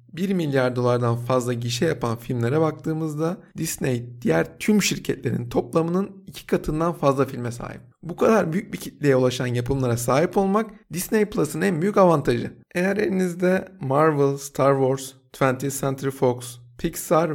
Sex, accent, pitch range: male, native, 125-170 Hz